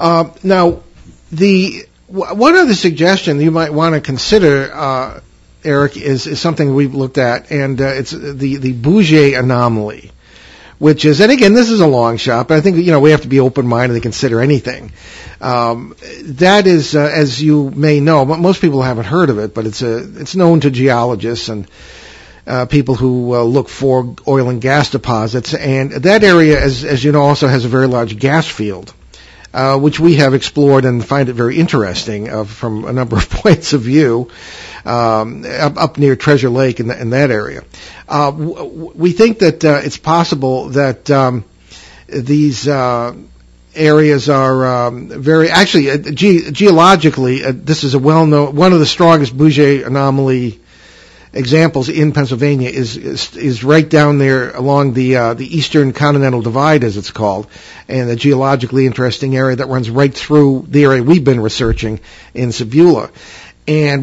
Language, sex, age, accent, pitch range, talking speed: English, male, 50-69, American, 125-155 Hz, 180 wpm